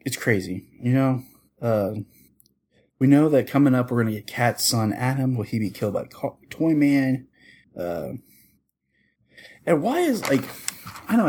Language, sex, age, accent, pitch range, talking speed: English, male, 30-49, American, 105-130 Hz, 165 wpm